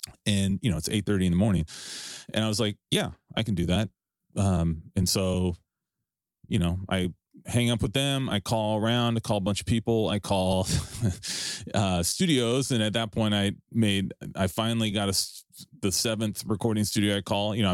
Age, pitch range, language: 30-49, 95-120 Hz, English